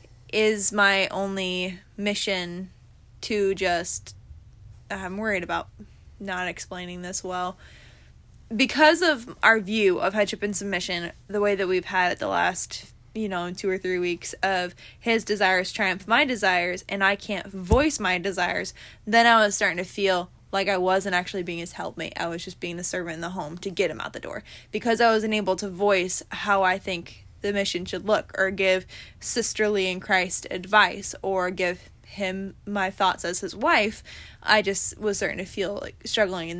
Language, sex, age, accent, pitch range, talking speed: English, female, 20-39, American, 180-210 Hz, 180 wpm